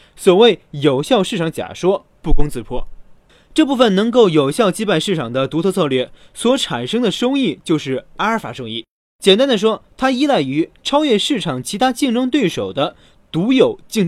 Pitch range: 160-235 Hz